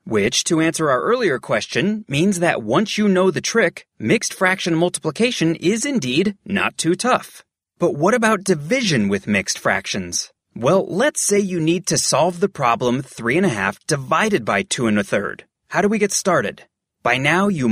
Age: 30-49